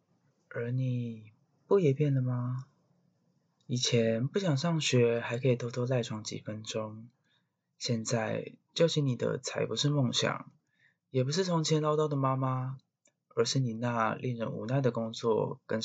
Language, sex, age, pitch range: Chinese, male, 20-39, 115-150 Hz